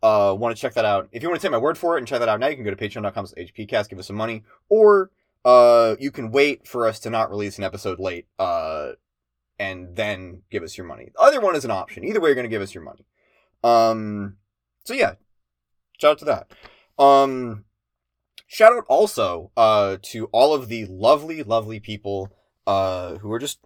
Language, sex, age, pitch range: English, male, 20-39, 95-130 Hz